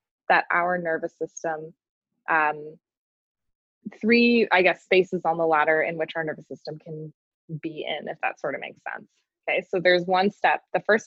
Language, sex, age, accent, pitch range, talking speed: English, female, 20-39, American, 170-220 Hz, 180 wpm